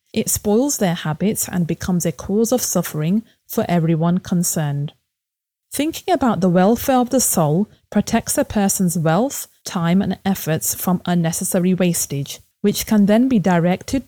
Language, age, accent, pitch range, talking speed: English, 30-49, British, 170-220 Hz, 150 wpm